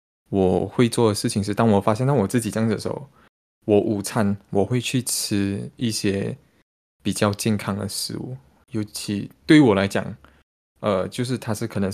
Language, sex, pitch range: Chinese, male, 95-110 Hz